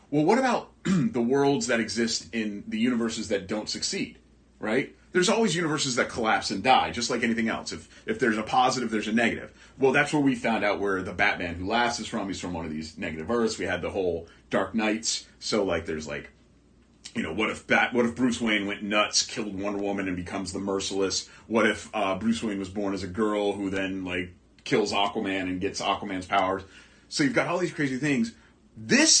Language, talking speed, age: English, 220 wpm, 30-49